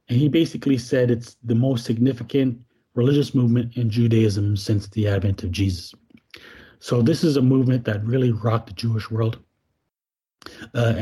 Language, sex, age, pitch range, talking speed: English, male, 30-49, 110-125 Hz, 160 wpm